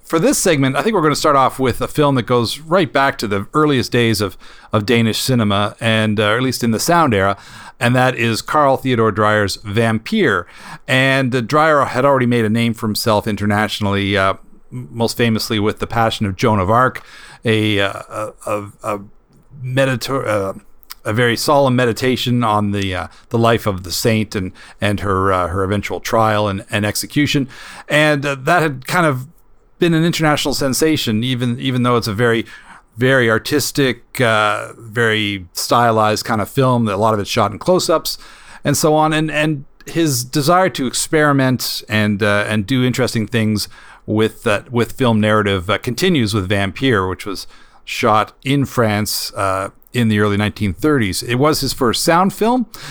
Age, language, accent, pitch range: 40-59, English, American, 105-135 Hz